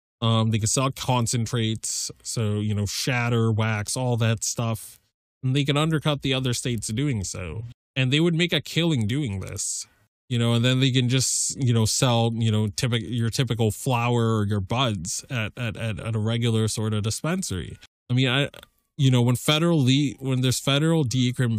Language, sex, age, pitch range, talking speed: English, male, 20-39, 105-130 Hz, 195 wpm